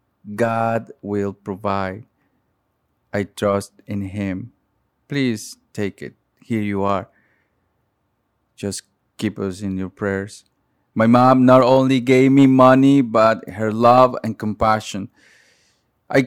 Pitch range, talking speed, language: 105-130 Hz, 120 wpm, English